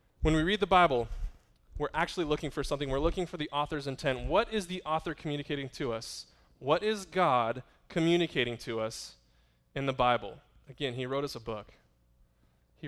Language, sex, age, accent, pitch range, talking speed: English, male, 20-39, American, 120-150 Hz, 180 wpm